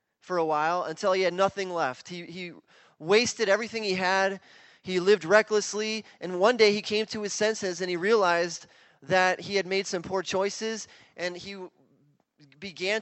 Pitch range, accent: 180-215 Hz, American